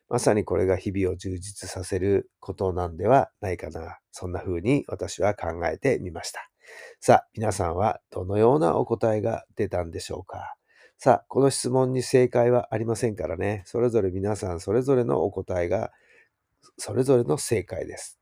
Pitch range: 95-135 Hz